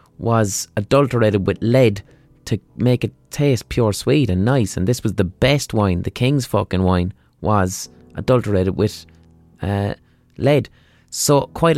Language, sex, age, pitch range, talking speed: English, male, 20-39, 95-130 Hz, 150 wpm